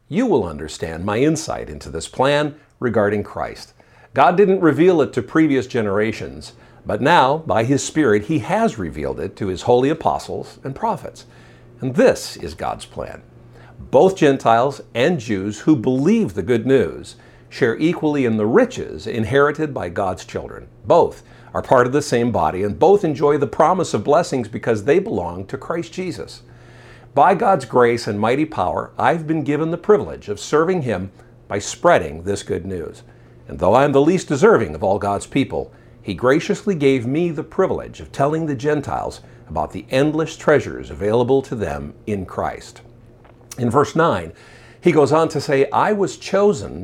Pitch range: 105-155 Hz